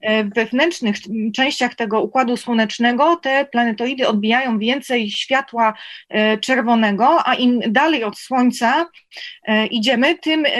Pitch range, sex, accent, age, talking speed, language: 225-270 Hz, female, native, 20-39, 100 wpm, Polish